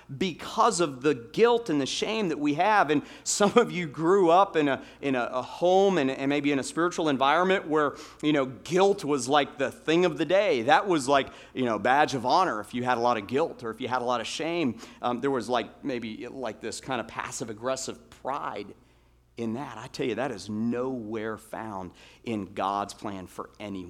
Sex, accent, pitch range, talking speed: male, American, 115-165 Hz, 225 wpm